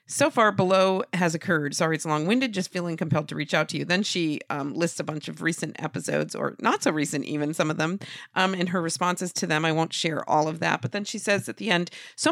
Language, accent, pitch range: English, American, 155-200 Hz